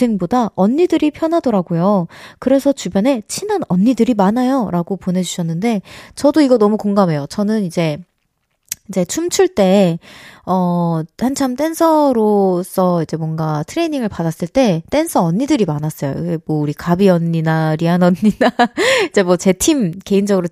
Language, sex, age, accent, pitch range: Korean, female, 20-39, native, 180-265 Hz